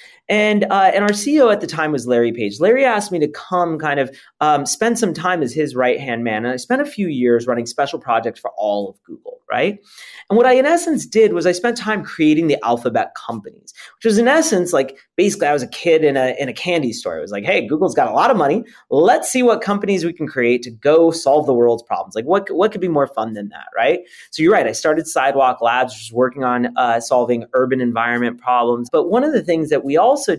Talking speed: 250 wpm